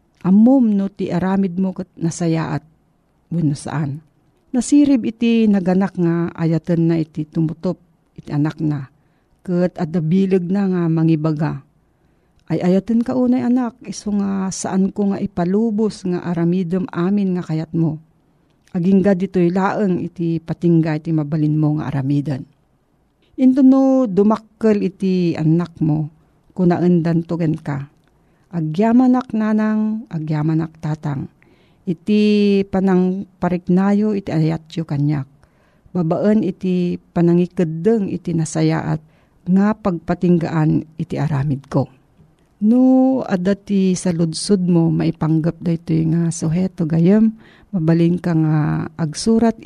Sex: female